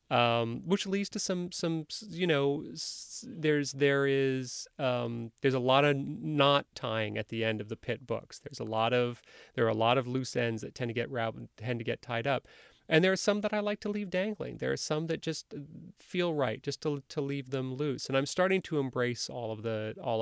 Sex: male